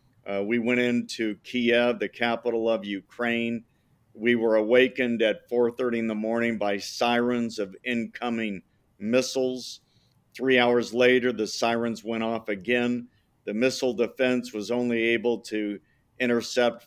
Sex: male